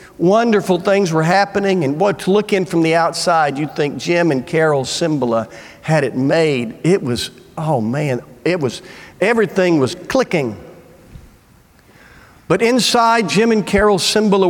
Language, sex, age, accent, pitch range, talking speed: English, male, 50-69, American, 130-205 Hz, 150 wpm